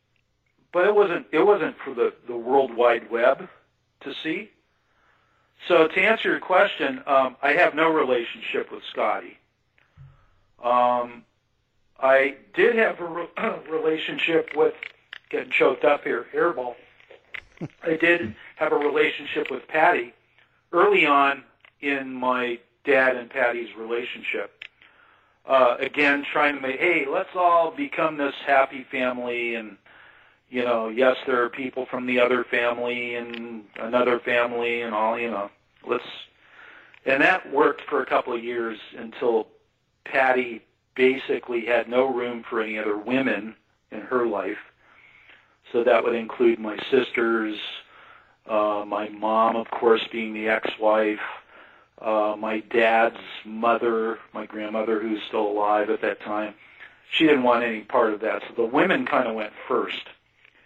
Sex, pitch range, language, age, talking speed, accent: male, 110-140 Hz, English, 50-69, 140 wpm, American